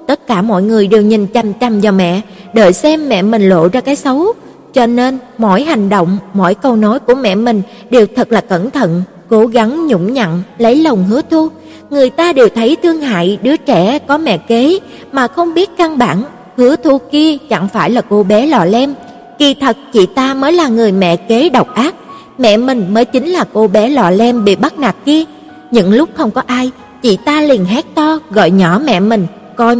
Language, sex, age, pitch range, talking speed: Vietnamese, female, 20-39, 210-275 Hz, 215 wpm